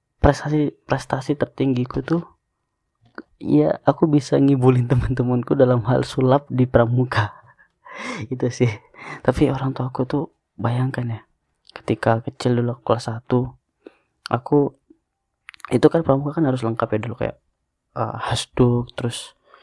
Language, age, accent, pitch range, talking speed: Indonesian, 20-39, native, 115-140 Hz, 120 wpm